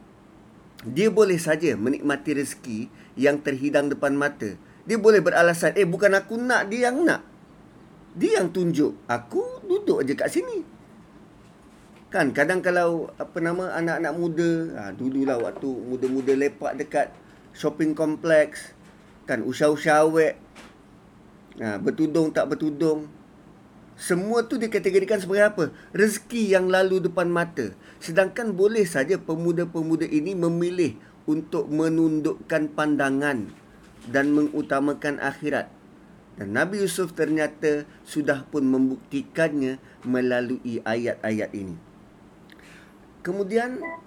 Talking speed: 110 wpm